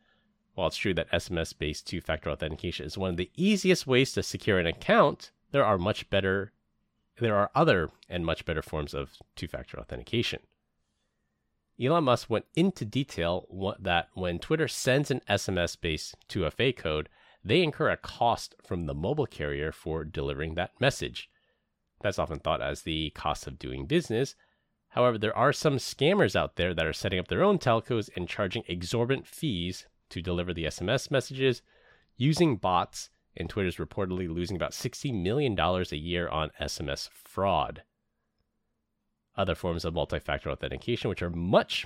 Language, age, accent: English, 30-49, American